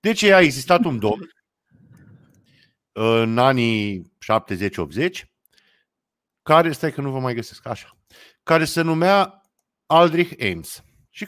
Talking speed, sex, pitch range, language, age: 115 wpm, male, 120-185 Hz, Romanian, 50-69